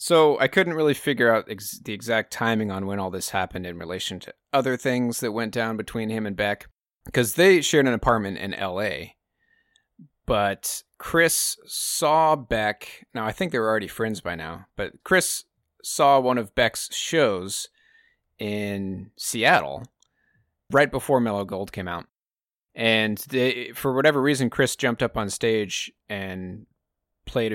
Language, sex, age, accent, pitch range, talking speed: English, male, 30-49, American, 105-130 Hz, 160 wpm